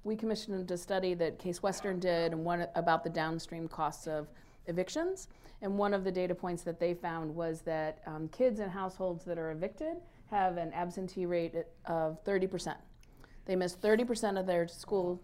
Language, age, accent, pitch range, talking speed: English, 40-59, American, 180-240 Hz, 180 wpm